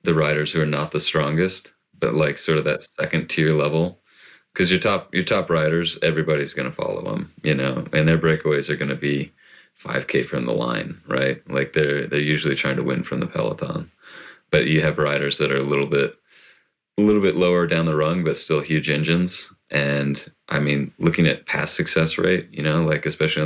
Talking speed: 210 wpm